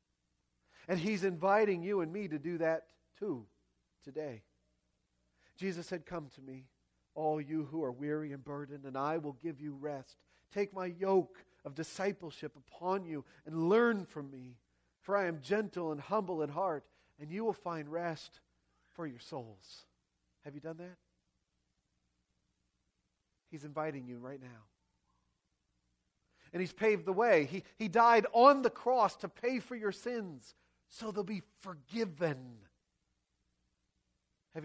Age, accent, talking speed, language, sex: 40-59, American, 150 wpm, English, male